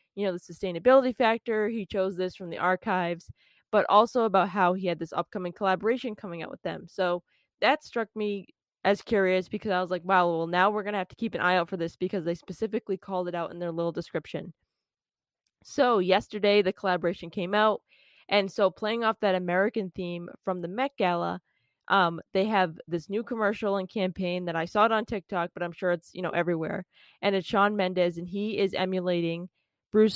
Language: English